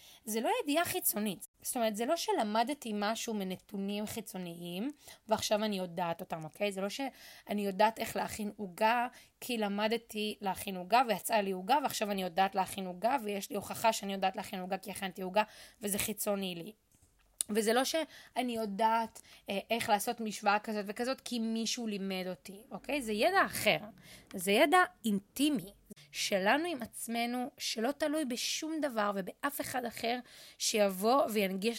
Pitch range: 200-265 Hz